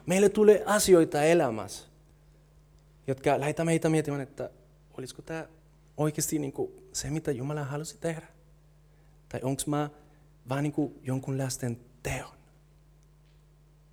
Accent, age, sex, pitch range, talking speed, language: native, 30-49, male, 130-155 Hz, 110 wpm, Finnish